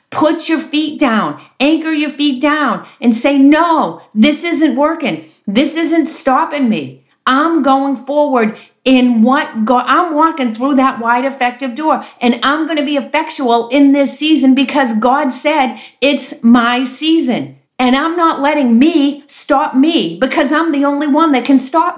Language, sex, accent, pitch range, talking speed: English, female, American, 225-290 Hz, 165 wpm